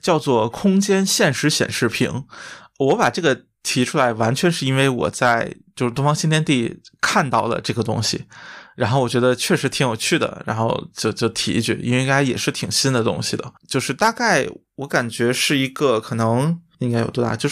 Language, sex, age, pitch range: Chinese, male, 20-39, 120-155 Hz